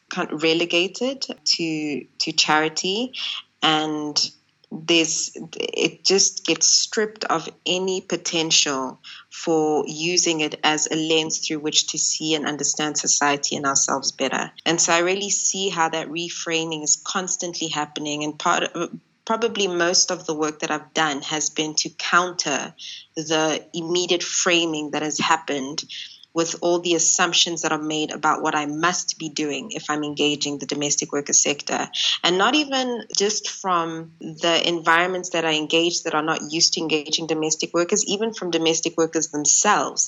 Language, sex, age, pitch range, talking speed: English, female, 20-39, 150-175 Hz, 155 wpm